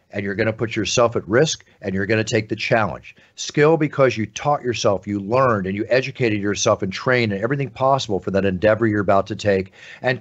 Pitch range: 105-130 Hz